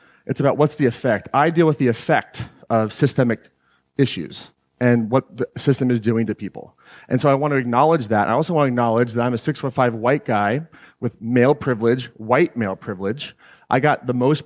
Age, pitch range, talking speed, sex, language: 30-49, 115-140 Hz, 205 wpm, male, English